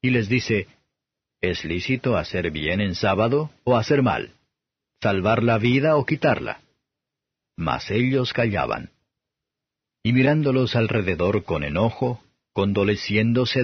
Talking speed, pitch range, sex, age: 115 wpm, 100-130 Hz, male, 50-69